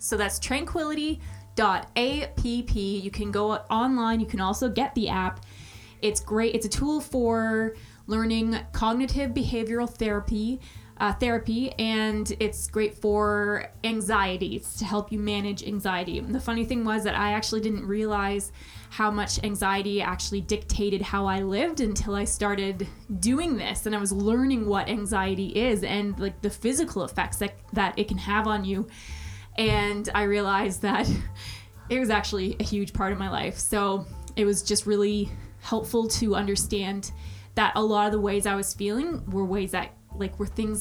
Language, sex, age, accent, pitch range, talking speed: English, female, 20-39, American, 195-220 Hz, 170 wpm